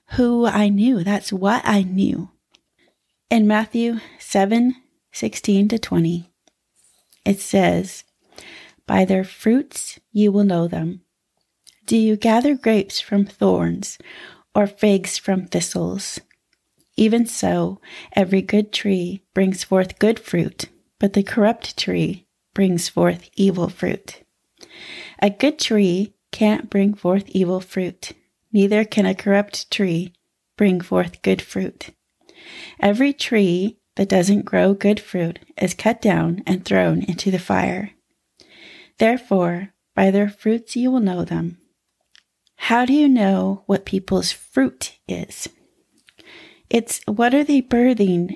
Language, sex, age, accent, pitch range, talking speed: English, female, 30-49, American, 185-230 Hz, 125 wpm